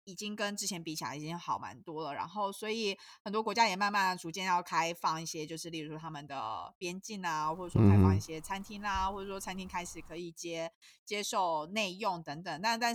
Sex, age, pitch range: female, 20-39, 160-210 Hz